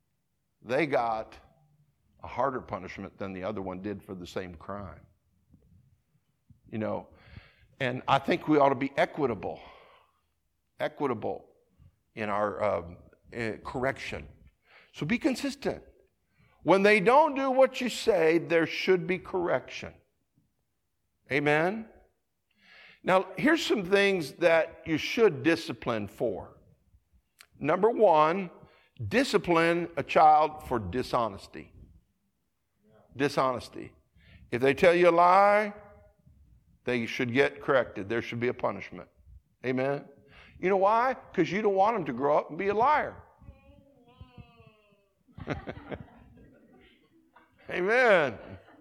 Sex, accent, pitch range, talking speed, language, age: male, American, 120-195 Hz, 115 wpm, English, 50-69